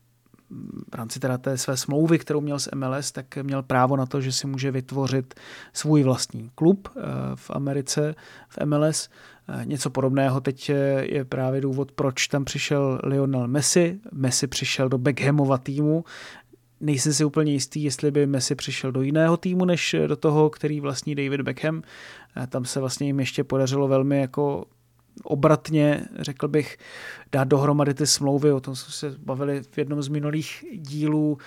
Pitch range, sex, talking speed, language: 135-150 Hz, male, 160 wpm, Czech